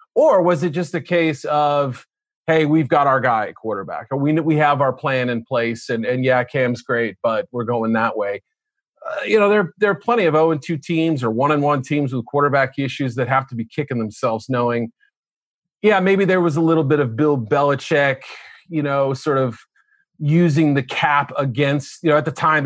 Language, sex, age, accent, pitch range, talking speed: English, male, 40-59, American, 130-170 Hz, 215 wpm